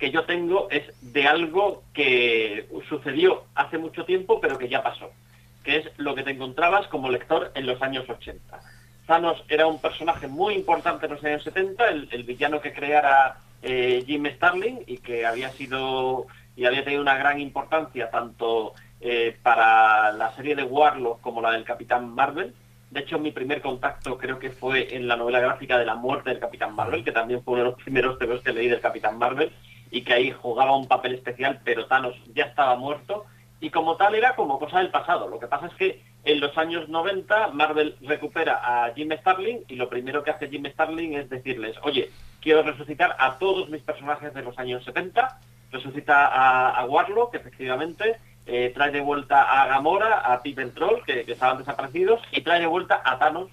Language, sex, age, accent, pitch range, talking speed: Spanish, male, 40-59, Spanish, 125-160 Hz, 195 wpm